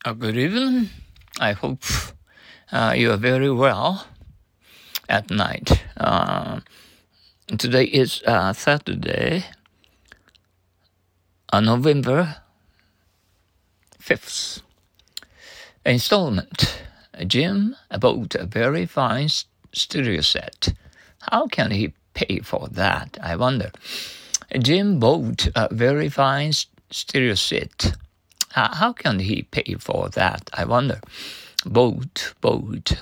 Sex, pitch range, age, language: male, 95-145 Hz, 60-79, Japanese